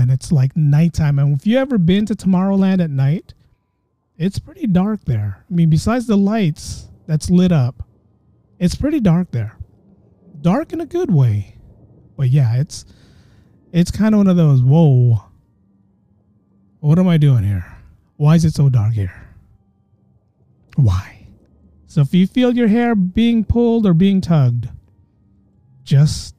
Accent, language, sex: American, English, male